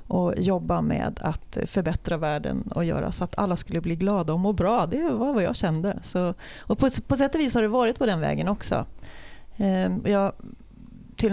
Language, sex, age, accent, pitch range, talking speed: Swedish, female, 30-49, native, 165-205 Hz, 205 wpm